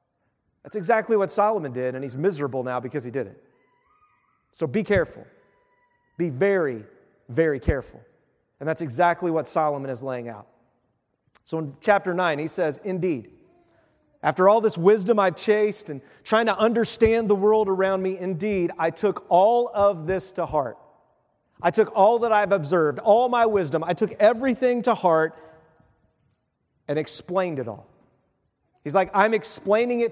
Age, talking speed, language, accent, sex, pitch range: 40-59, 160 wpm, English, American, male, 160-225 Hz